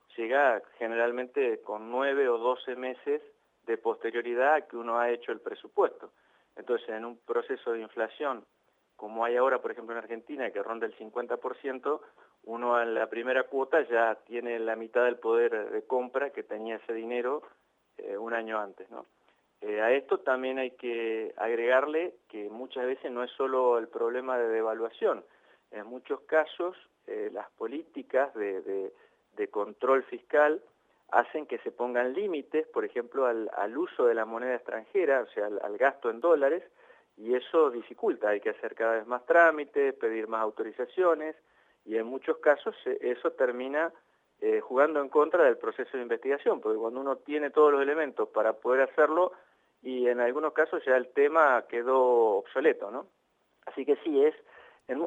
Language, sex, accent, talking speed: Spanish, male, Argentinian, 170 wpm